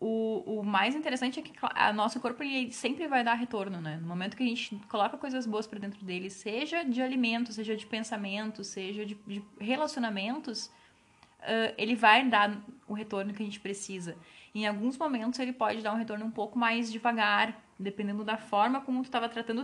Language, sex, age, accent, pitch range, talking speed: Portuguese, female, 10-29, Brazilian, 195-230 Hz, 200 wpm